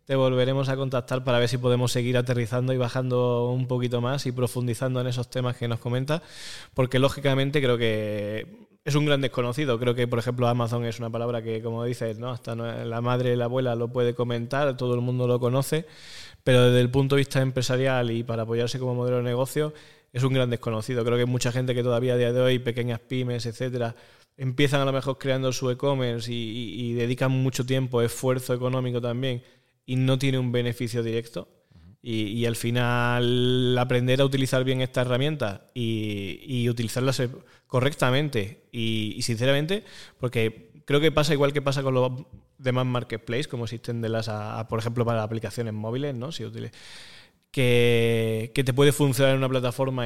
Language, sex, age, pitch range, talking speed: Spanish, male, 20-39, 120-130 Hz, 190 wpm